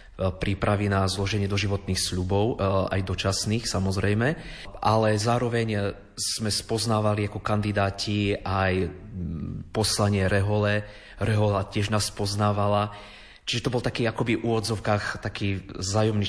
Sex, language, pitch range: male, Slovak, 95-105 Hz